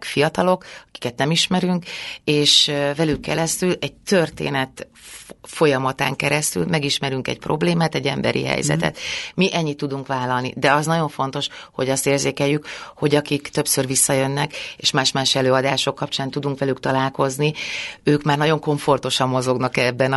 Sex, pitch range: female, 130-150 Hz